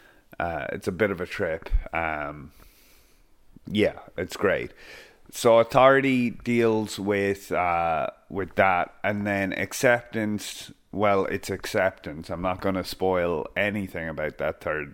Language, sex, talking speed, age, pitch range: English, male, 135 wpm, 30-49, 90-110 Hz